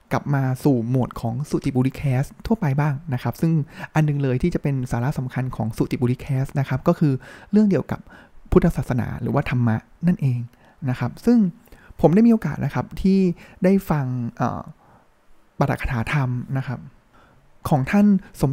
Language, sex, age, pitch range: Thai, male, 20-39, 130-165 Hz